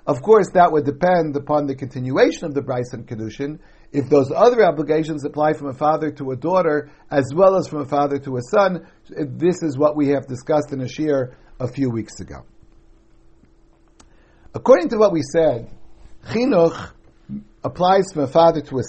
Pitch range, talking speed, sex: 135-180 Hz, 180 wpm, male